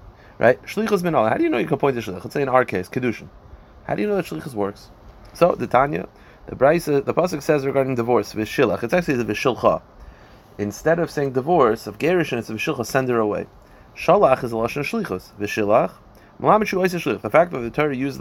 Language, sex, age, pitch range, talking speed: English, male, 30-49, 115-165 Hz, 215 wpm